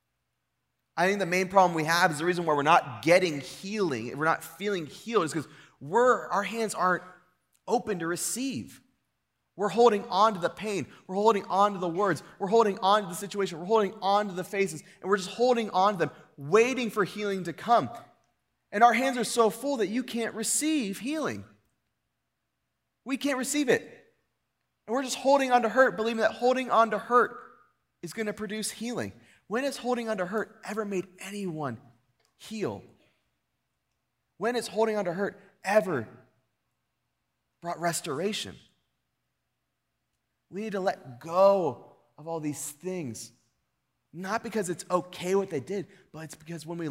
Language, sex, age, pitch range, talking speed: English, male, 30-49, 155-215 Hz, 175 wpm